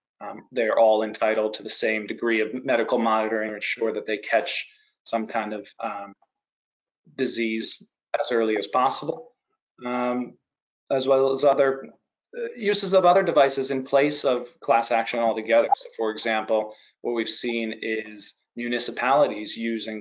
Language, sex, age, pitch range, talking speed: English, male, 30-49, 110-135 Hz, 145 wpm